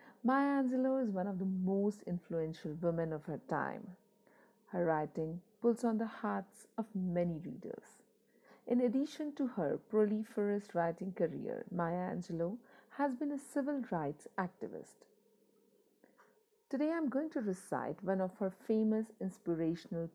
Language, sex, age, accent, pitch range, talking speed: Hindi, female, 50-69, native, 180-245 Hz, 135 wpm